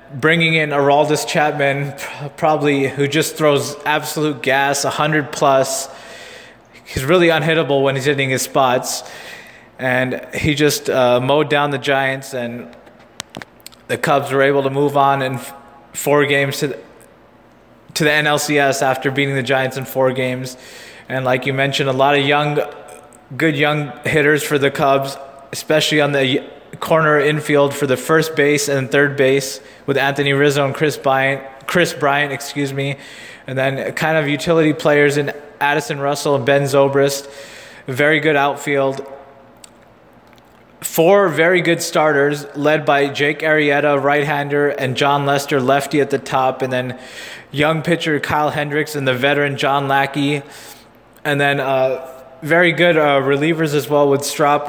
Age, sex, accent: 20-39, male, American